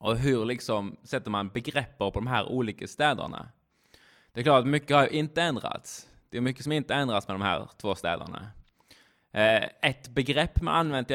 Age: 20-39